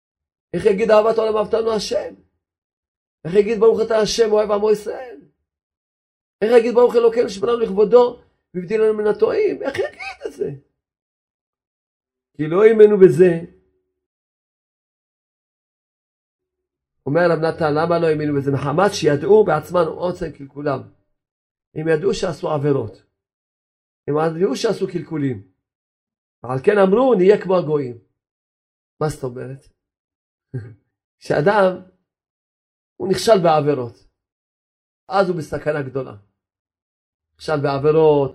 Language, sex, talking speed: Hebrew, male, 110 wpm